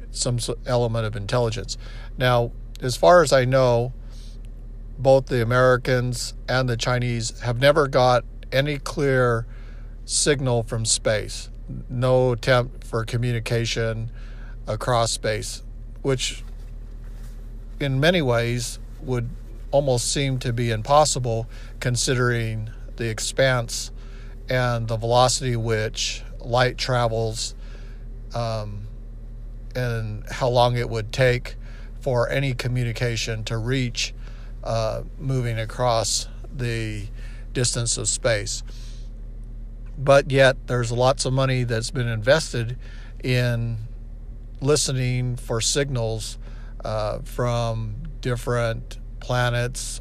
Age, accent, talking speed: 50-69, American, 100 wpm